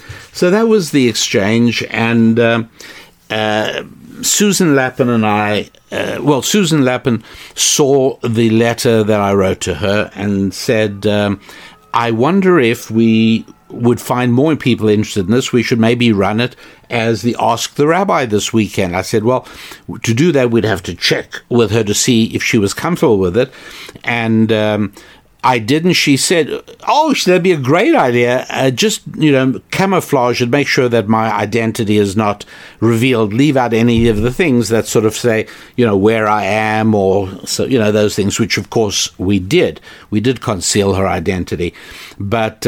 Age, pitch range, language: 60-79, 105-130 Hz, English